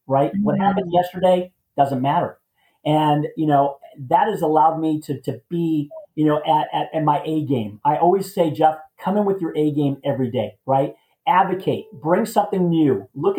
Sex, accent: male, American